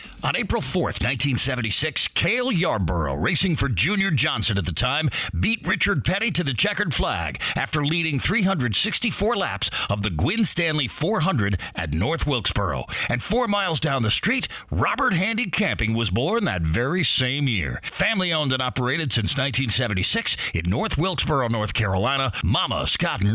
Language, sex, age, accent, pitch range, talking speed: English, male, 40-59, American, 110-175 Hz, 155 wpm